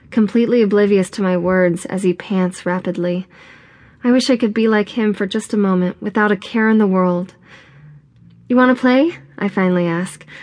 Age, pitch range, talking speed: 20-39, 185-220 Hz, 190 wpm